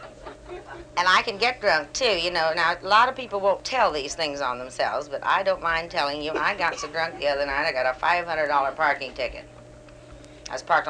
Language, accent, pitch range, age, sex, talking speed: English, American, 160-215 Hz, 50-69, female, 225 wpm